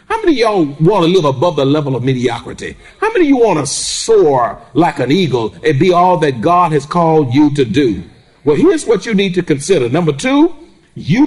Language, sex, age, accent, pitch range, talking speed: English, male, 50-69, American, 140-185 Hz, 225 wpm